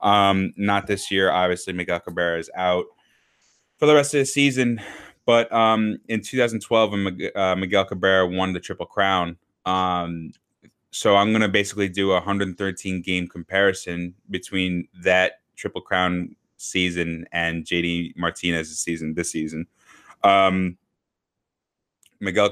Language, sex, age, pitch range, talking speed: English, male, 20-39, 90-100 Hz, 130 wpm